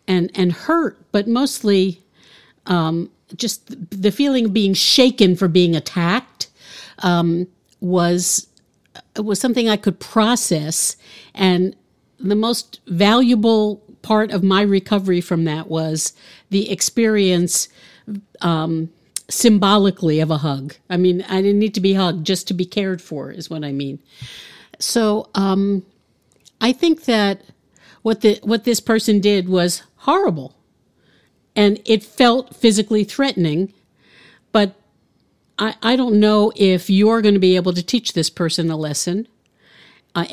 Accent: American